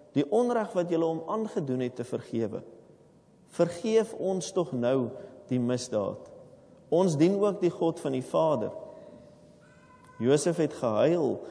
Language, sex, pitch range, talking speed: English, male, 125-180 Hz, 135 wpm